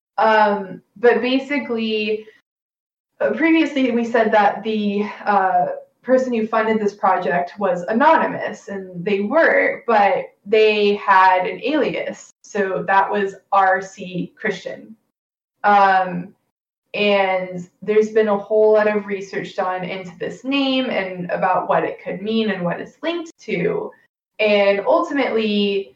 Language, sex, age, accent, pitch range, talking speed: English, female, 20-39, American, 190-235 Hz, 130 wpm